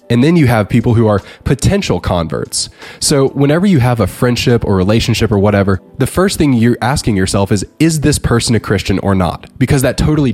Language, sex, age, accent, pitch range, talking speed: English, male, 20-39, American, 100-125 Hz, 210 wpm